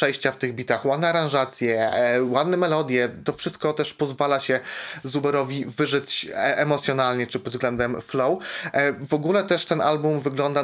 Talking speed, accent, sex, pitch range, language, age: 145 wpm, native, male, 125-150 Hz, Polish, 20-39